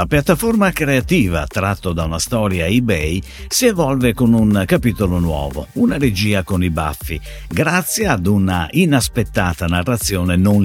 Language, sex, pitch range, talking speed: Italian, male, 90-140 Hz, 140 wpm